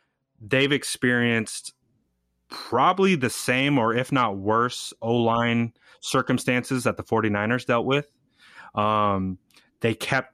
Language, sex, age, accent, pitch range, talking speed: English, male, 20-39, American, 105-125 Hz, 110 wpm